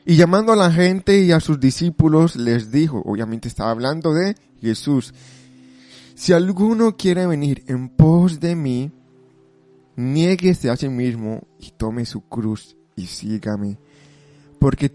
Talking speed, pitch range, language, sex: 140 wpm, 120-155 Hz, Spanish, male